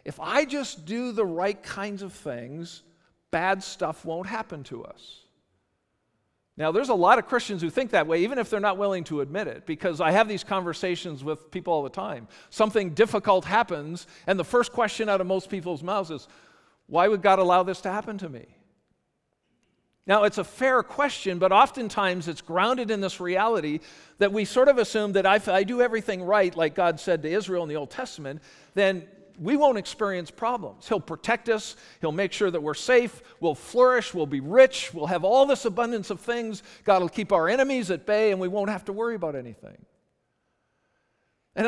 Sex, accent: male, American